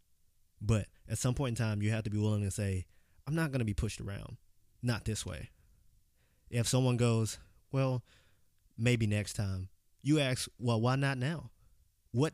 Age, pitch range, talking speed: 20-39, 100-125 Hz, 180 wpm